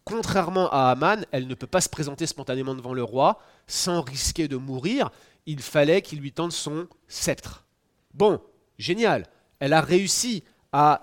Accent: French